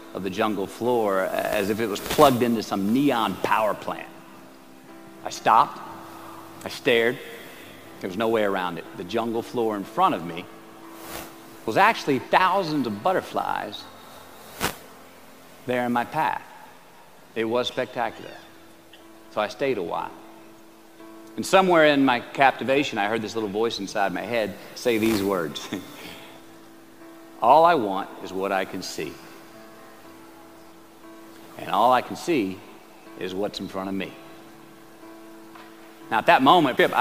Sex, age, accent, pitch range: male, 50-69, American, 85-125 Hz